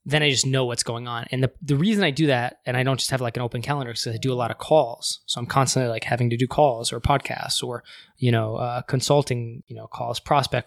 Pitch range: 125-140 Hz